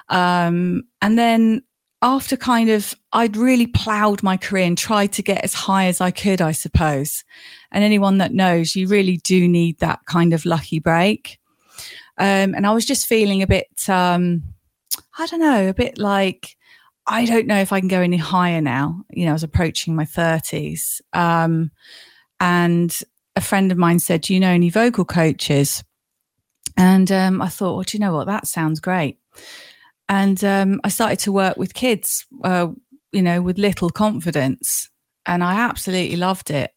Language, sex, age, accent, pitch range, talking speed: English, female, 30-49, British, 175-200 Hz, 180 wpm